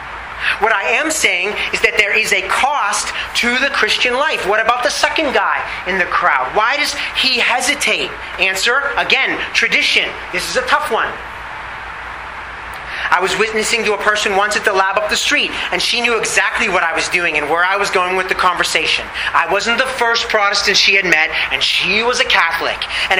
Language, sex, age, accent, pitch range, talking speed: English, male, 30-49, American, 185-235 Hz, 200 wpm